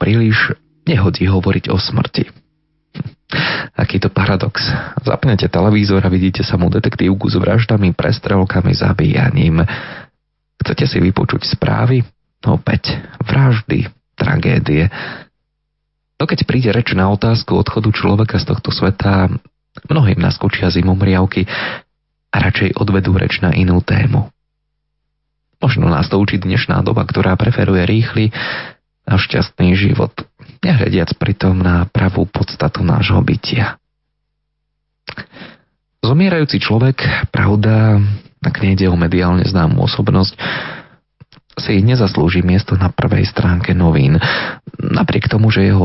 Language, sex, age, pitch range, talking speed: Slovak, male, 30-49, 95-130 Hz, 115 wpm